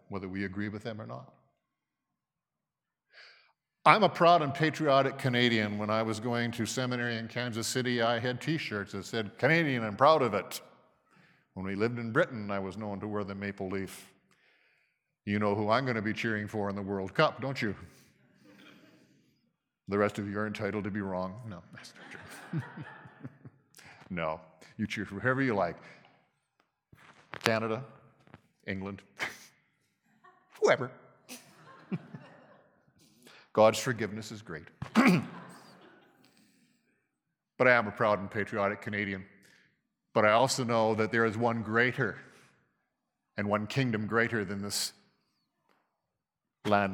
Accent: American